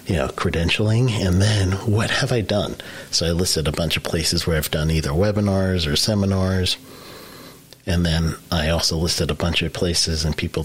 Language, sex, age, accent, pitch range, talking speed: English, male, 40-59, American, 80-105 Hz, 190 wpm